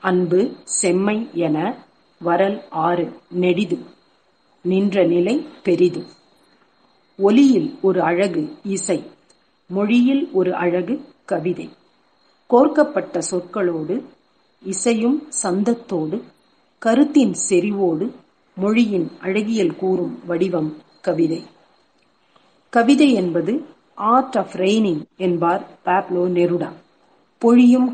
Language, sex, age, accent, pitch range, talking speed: Tamil, female, 40-59, native, 175-220 Hz, 75 wpm